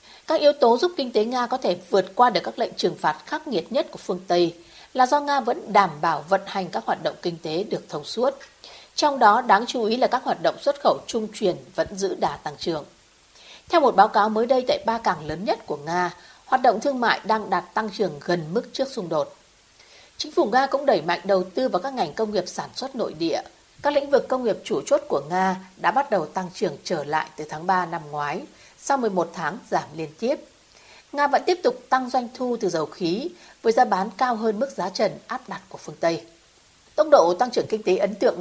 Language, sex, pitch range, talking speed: Vietnamese, female, 180-260 Hz, 245 wpm